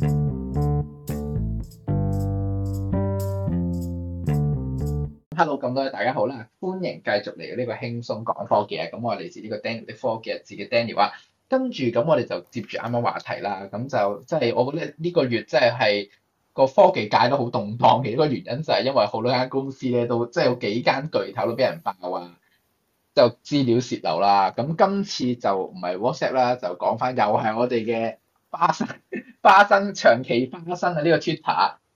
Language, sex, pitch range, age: Chinese, male, 100-150 Hz, 20-39